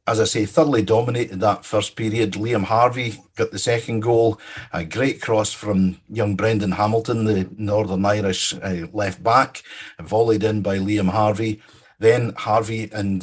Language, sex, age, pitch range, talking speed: English, male, 50-69, 100-125 Hz, 155 wpm